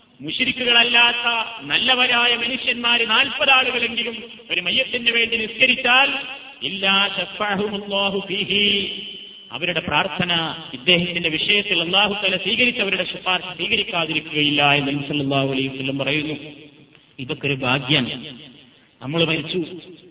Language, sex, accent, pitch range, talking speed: Malayalam, male, native, 170-235 Hz, 55 wpm